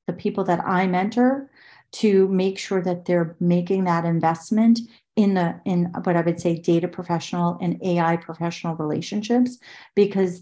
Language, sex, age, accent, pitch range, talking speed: English, female, 40-59, American, 170-215 Hz, 150 wpm